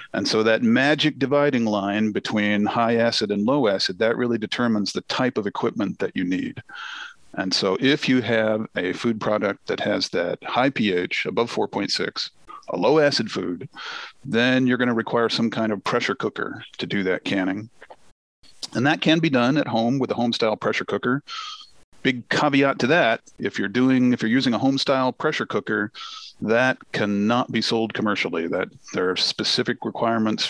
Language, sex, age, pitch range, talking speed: English, male, 40-59, 105-130 Hz, 180 wpm